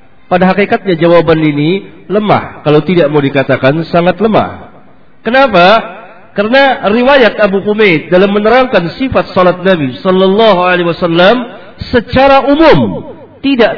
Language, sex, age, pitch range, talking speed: Swahili, male, 50-69, 160-210 Hz, 120 wpm